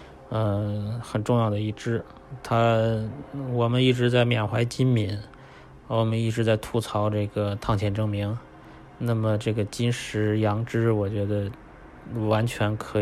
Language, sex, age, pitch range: Chinese, male, 20-39, 100-115 Hz